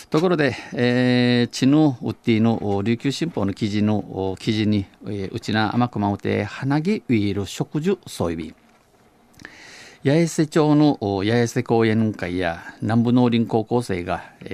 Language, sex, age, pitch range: Japanese, male, 50-69, 100-125 Hz